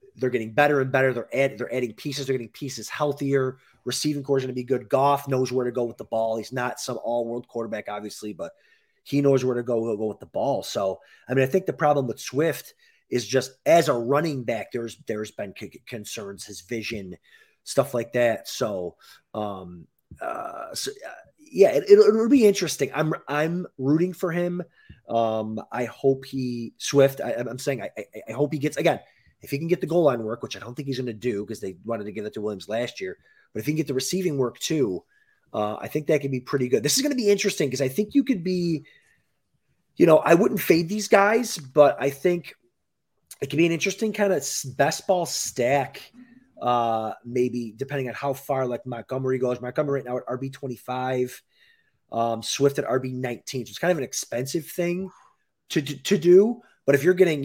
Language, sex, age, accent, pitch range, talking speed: English, male, 30-49, American, 120-160 Hz, 220 wpm